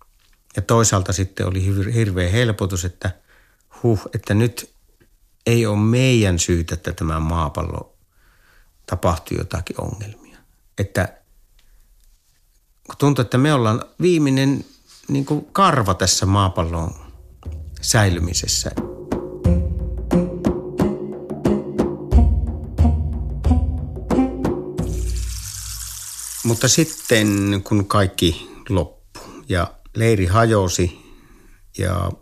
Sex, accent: male, native